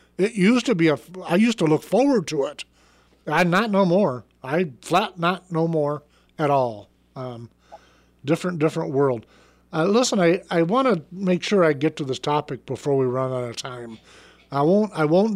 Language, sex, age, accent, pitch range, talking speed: English, male, 50-69, American, 140-175 Hz, 195 wpm